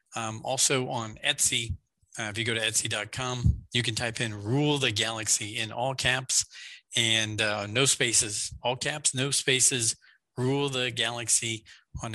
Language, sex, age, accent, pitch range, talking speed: English, male, 40-59, American, 110-130 Hz, 160 wpm